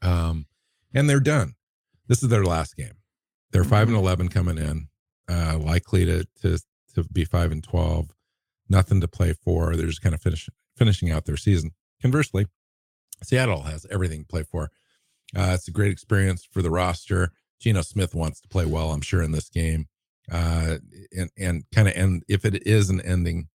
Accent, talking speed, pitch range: American, 190 wpm, 80-100 Hz